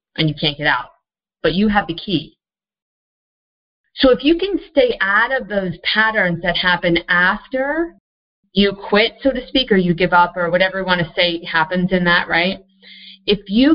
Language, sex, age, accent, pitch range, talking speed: English, female, 40-59, American, 165-200 Hz, 190 wpm